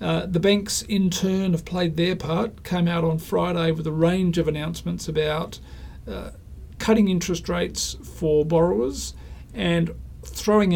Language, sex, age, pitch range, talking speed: English, male, 40-59, 155-175 Hz, 150 wpm